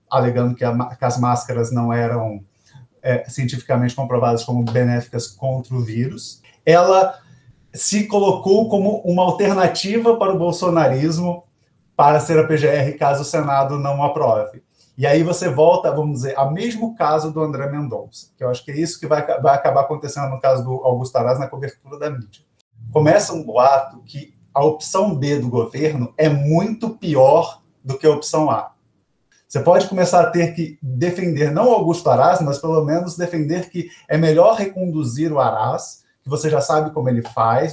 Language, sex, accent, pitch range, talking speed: Portuguese, male, Brazilian, 130-175 Hz, 175 wpm